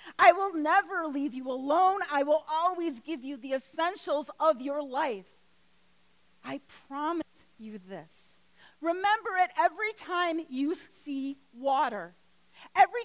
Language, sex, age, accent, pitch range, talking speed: English, female, 40-59, American, 225-315 Hz, 130 wpm